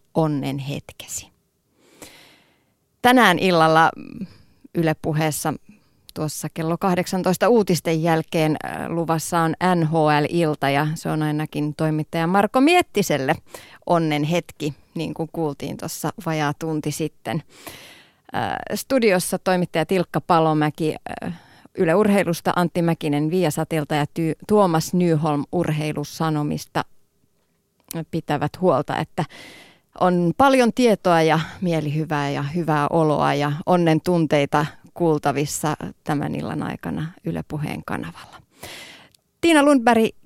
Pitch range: 150-180 Hz